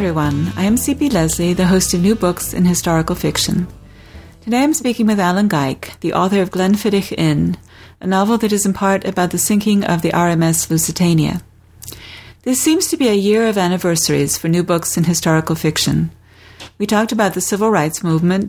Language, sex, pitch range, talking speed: English, female, 150-195 Hz, 195 wpm